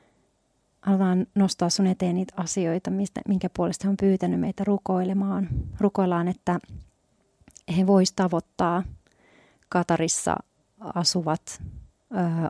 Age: 30-49